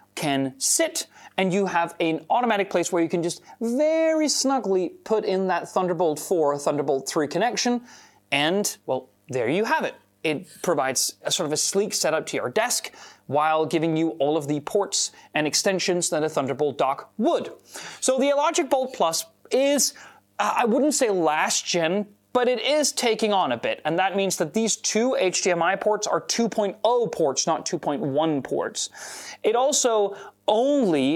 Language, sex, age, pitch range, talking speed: English, male, 30-49, 165-215 Hz, 170 wpm